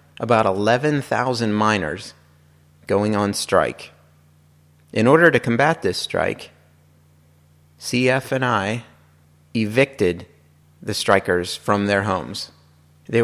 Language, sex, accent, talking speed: English, male, American, 100 wpm